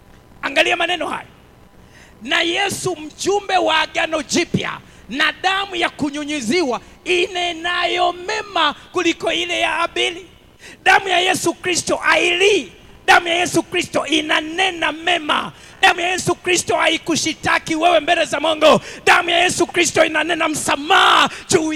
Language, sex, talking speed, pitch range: English, male, 120 wpm, 315-355 Hz